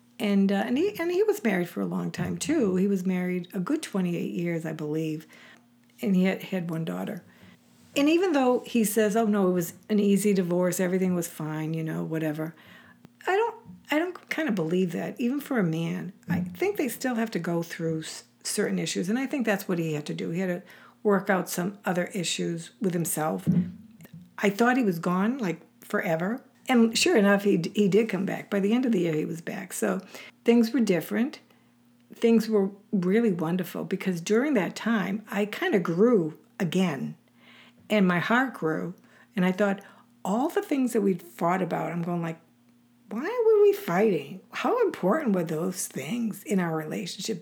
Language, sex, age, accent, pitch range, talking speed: English, female, 60-79, American, 175-225 Hz, 200 wpm